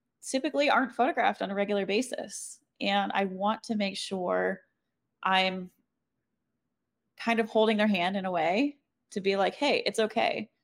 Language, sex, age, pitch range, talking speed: English, female, 20-39, 190-240 Hz, 160 wpm